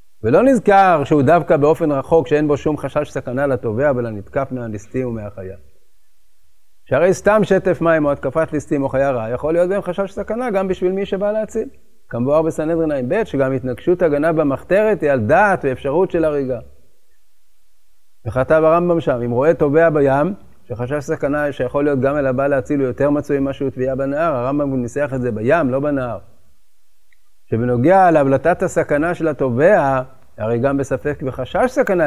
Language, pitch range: Hebrew, 130-165 Hz